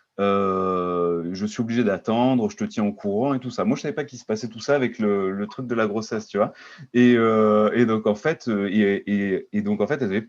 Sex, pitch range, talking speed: male, 100-135 Hz, 270 wpm